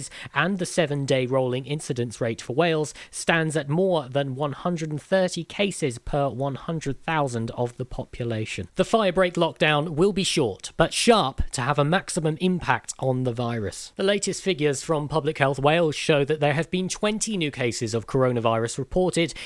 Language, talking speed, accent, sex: English, 165 wpm, British, male